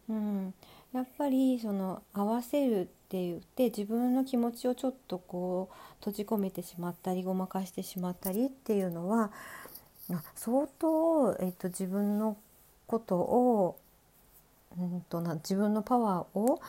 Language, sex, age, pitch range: Japanese, female, 50-69, 185-240 Hz